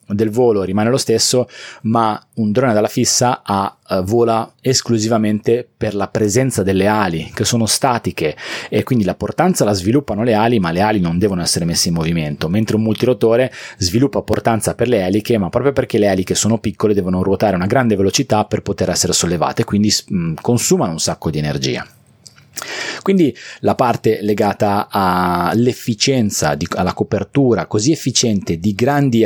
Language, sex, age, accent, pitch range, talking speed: Italian, male, 30-49, native, 95-120 Hz, 170 wpm